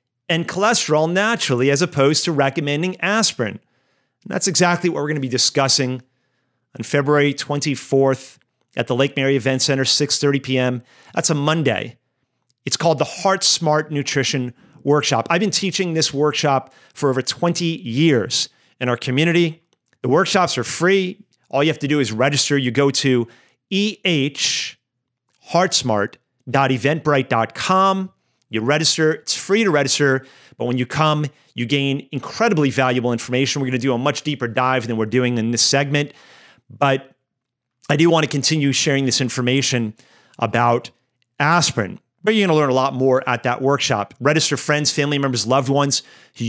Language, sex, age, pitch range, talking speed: English, male, 40-59, 125-155 Hz, 155 wpm